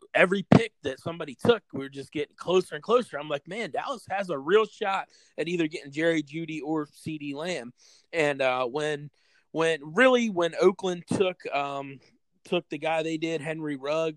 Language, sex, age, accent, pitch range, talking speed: English, male, 30-49, American, 135-165 Hz, 180 wpm